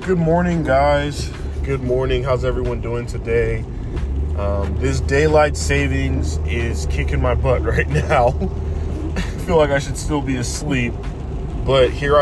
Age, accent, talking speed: 20-39, American, 140 wpm